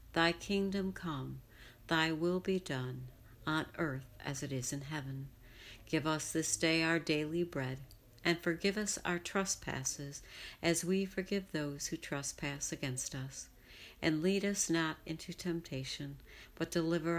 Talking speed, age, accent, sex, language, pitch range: 145 wpm, 60-79, American, female, English, 140-170 Hz